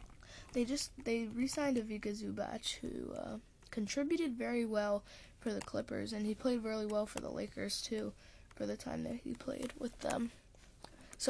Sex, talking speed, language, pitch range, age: female, 170 wpm, English, 205-265 Hz, 10-29